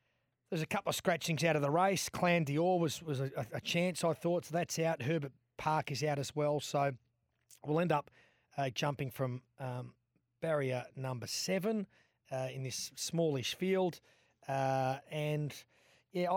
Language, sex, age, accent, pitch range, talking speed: English, male, 30-49, Australian, 135-165 Hz, 170 wpm